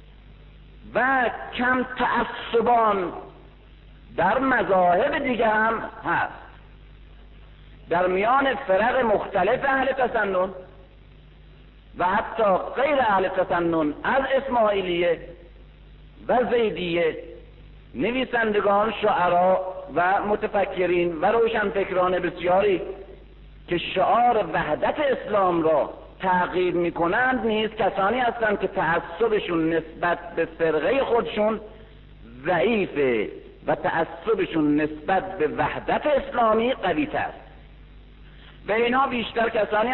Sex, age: male, 50-69